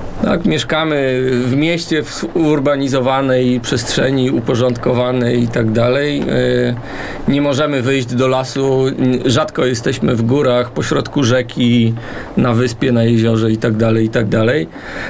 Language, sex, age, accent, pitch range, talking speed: Polish, male, 40-59, native, 120-145 Hz, 125 wpm